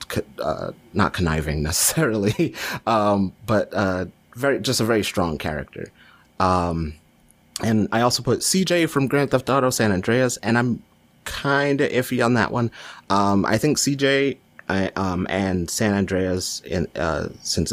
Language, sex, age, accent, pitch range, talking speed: English, male, 30-49, American, 90-125 Hz, 150 wpm